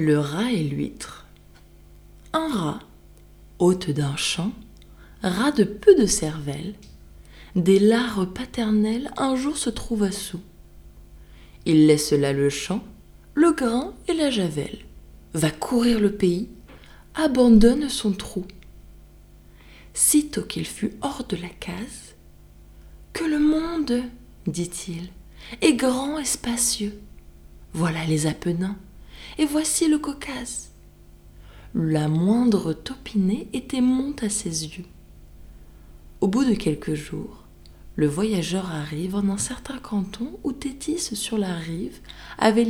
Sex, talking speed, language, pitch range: female, 125 wpm, French, 155-250 Hz